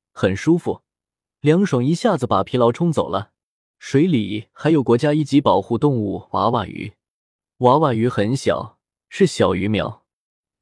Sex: male